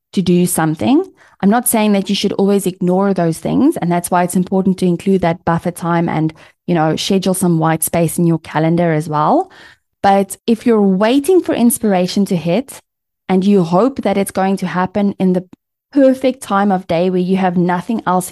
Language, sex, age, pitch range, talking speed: English, female, 20-39, 170-205 Hz, 205 wpm